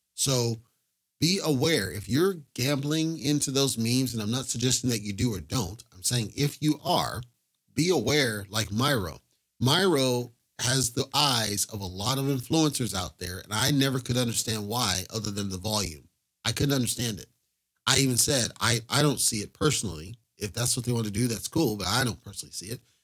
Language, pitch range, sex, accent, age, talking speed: English, 110-140 Hz, male, American, 40-59, 200 wpm